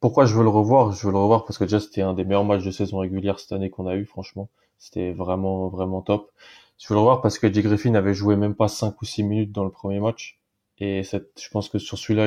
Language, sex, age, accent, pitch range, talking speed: French, male, 20-39, French, 95-110 Hz, 280 wpm